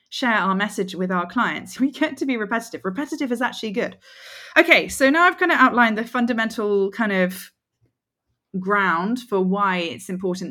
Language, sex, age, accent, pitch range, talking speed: English, female, 20-39, British, 170-235 Hz, 175 wpm